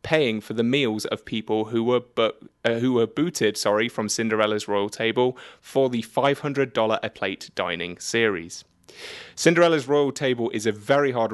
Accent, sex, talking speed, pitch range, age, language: British, male, 170 wpm, 110-140 Hz, 20-39, English